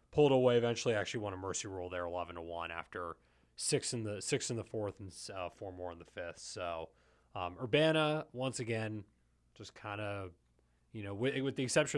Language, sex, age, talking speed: English, male, 20-39, 205 wpm